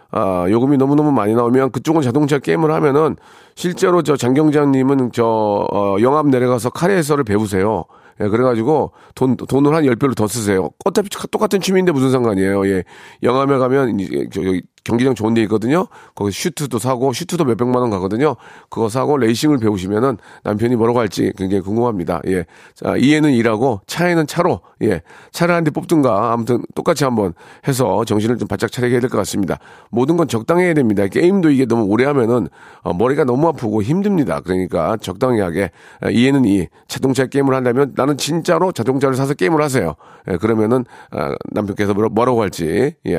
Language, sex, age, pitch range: Korean, male, 40-59, 110-150 Hz